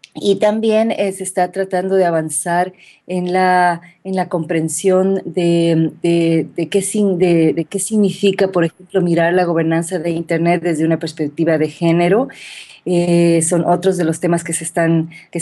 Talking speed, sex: 140 wpm, female